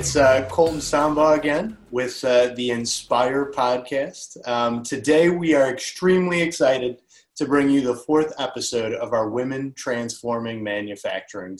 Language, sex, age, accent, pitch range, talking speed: English, male, 30-49, American, 115-145 Hz, 140 wpm